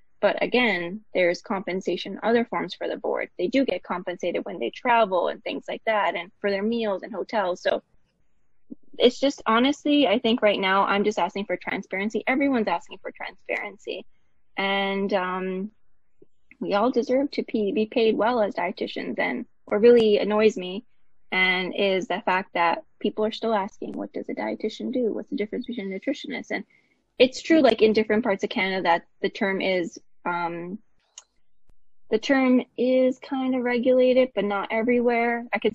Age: 10-29